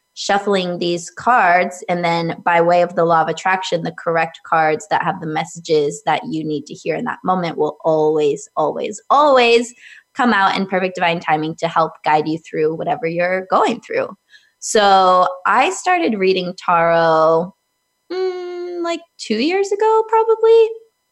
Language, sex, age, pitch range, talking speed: English, female, 20-39, 170-230 Hz, 160 wpm